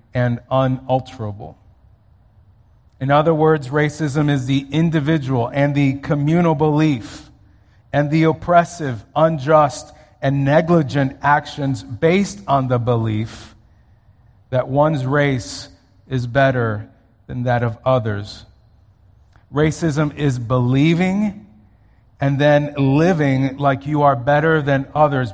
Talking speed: 105 wpm